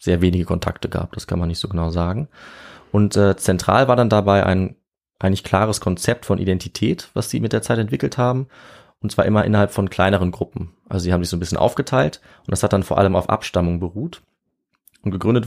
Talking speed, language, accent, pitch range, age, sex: 220 wpm, German, German, 90-110 Hz, 20-39, male